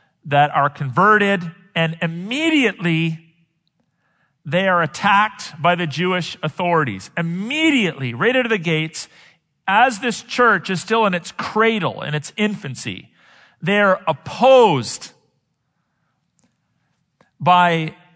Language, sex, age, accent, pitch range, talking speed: English, male, 40-59, American, 155-205 Hz, 105 wpm